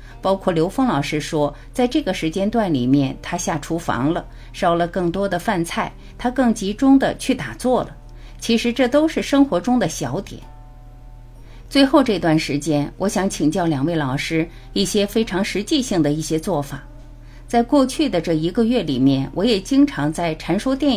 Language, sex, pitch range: Chinese, female, 145-235 Hz